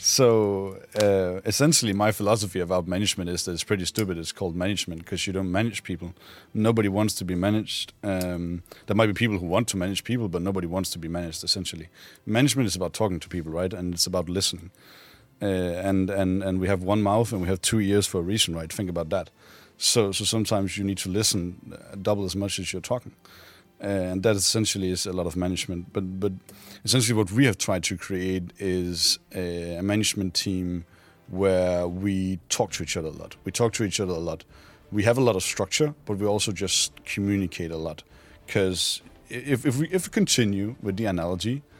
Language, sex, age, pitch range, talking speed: English, male, 30-49, 90-105 Hz, 205 wpm